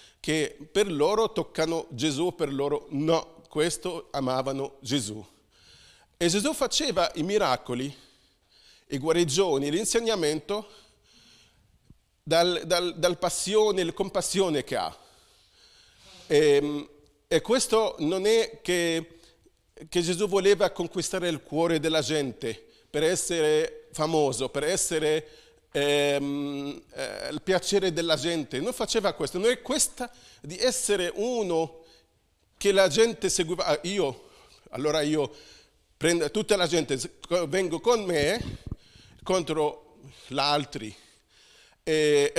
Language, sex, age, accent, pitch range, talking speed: Italian, male, 40-59, native, 150-200 Hz, 115 wpm